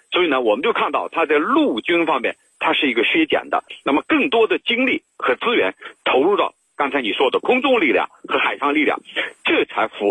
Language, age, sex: Chinese, 50-69, male